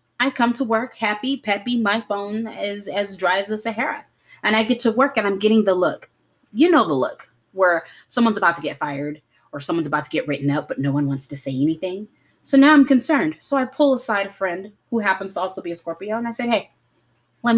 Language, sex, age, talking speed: English, female, 30-49, 240 wpm